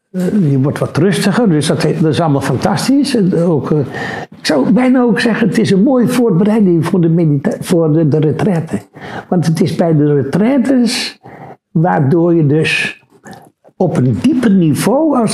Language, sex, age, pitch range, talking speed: Dutch, male, 60-79, 155-210 Hz, 150 wpm